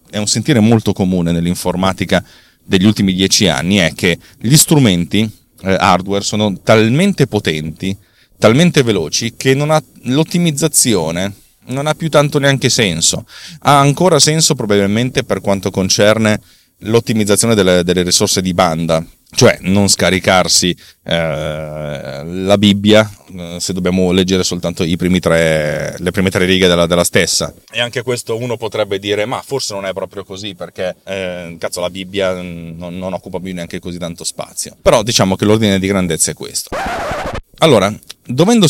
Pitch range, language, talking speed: 90-115 Hz, Italian, 150 wpm